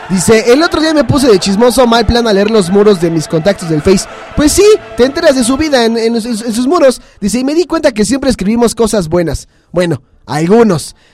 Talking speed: 225 wpm